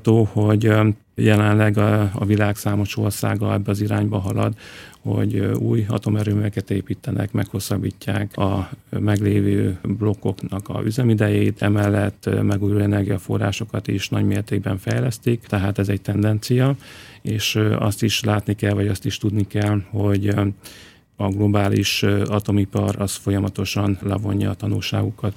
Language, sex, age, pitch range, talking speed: Hungarian, male, 40-59, 100-105 Hz, 120 wpm